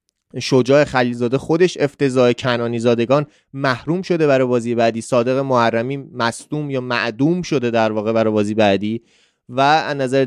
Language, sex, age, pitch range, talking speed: Persian, male, 20-39, 130-170 Hz, 140 wpm